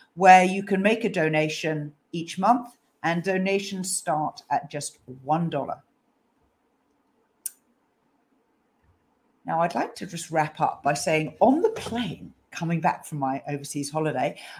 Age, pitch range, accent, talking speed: 40-59, 155-220 Hz, British, 130 wpm